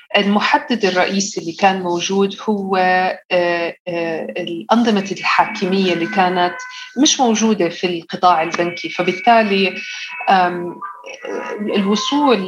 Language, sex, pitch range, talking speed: English, female, 175-220 Hz, 80 wpm